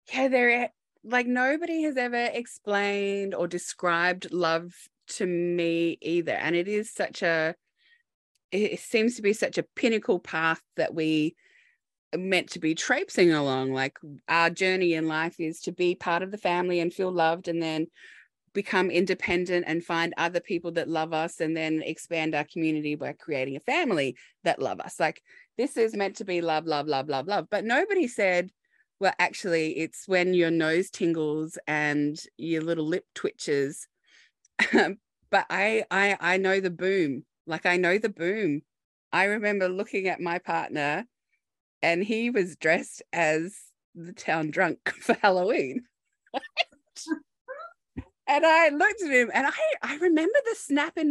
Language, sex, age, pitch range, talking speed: English, female, 20-39, 165-250 Hz, 165 wpm